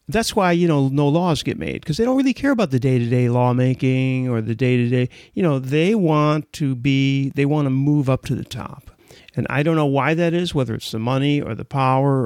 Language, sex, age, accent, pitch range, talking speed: English, male, 40-59, American, 130-175 Hz, 235 wpm